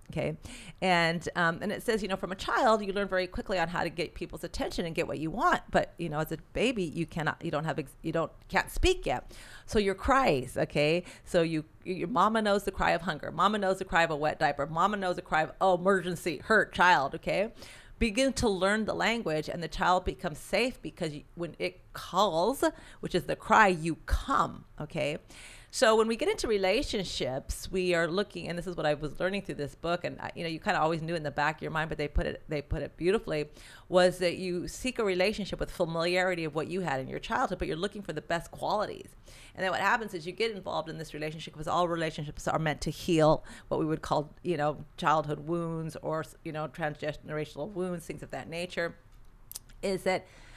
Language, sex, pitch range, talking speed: English, female, 155-190 Hz, 230 wpm